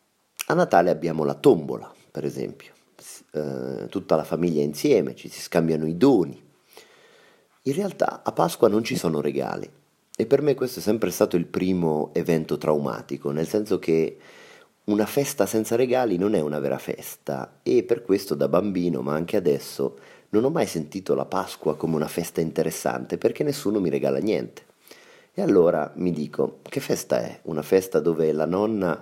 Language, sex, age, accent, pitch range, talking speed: Italian, male, 30-49, native, 80-110 Hz, 175 wpm